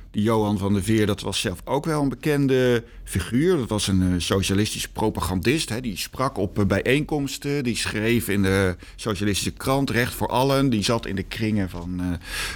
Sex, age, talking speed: male, 50-69, 185 wpm